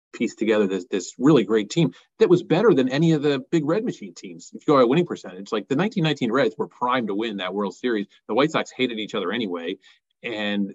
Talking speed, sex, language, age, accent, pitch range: 240 wpm, male, English, 30-49, American, 105-135 Hz